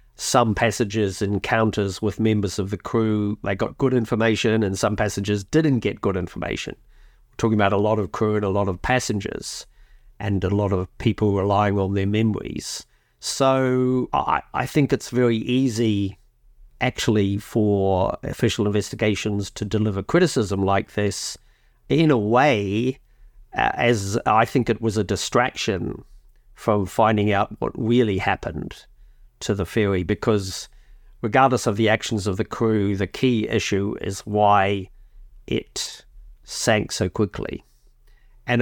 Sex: male